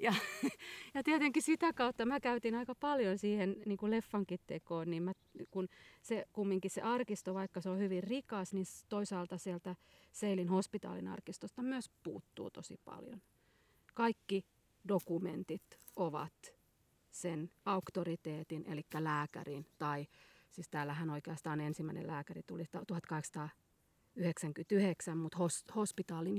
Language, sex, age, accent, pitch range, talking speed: Finnish, female, 40-59, native, 165-200 Hz, 125 wpm